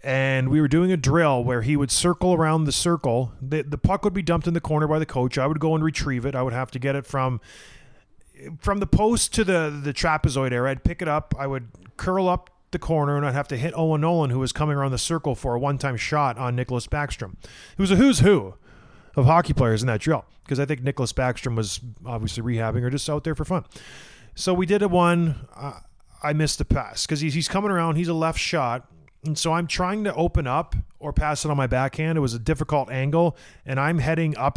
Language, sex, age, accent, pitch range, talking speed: English, male, 30-49, American, 130-165 Hz, 245 wpm